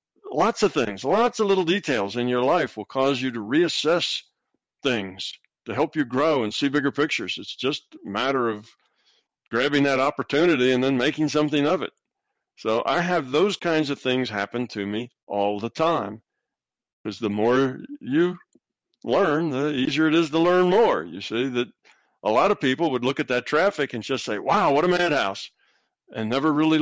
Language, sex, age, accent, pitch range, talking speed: English, male, 50-69, American, 105-145 Hz, 190 wpm